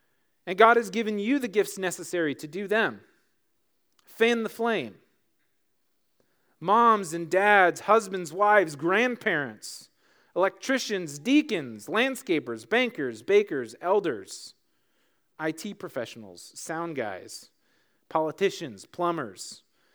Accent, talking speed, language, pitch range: American, 95 wpm, English, 150-210 Hz